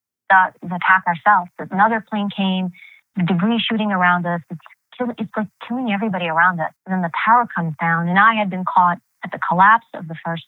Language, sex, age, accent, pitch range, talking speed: English, female, 30-49, American, 180-200 Hz, 190 wpm